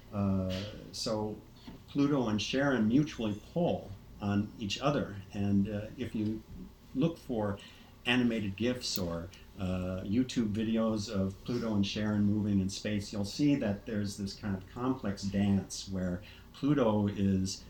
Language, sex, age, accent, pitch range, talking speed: English, male, 50-69, American, 95-110 Hz, 140 wpm